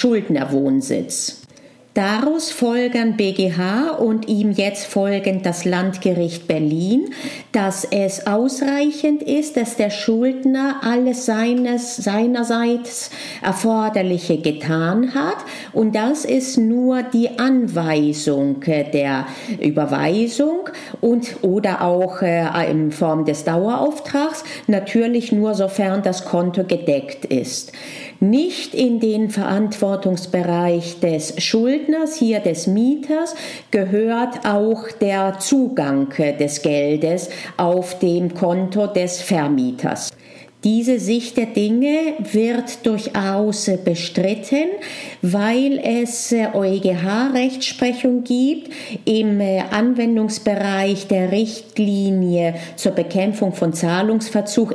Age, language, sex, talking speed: 40-59, German, female, 95 wpm